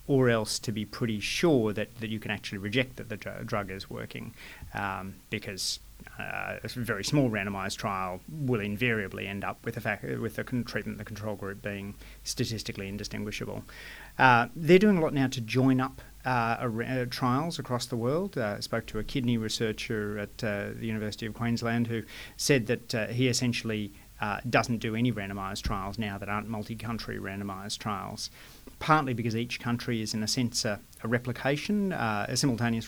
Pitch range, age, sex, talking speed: 105-120 Hz, 30-49, male, 180 wpm